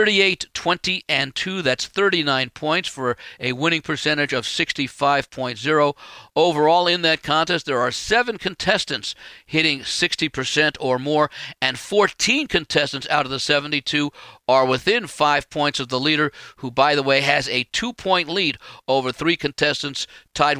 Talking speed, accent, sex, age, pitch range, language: 150 wpm, American, male, 50-69, 130-155 Hz, English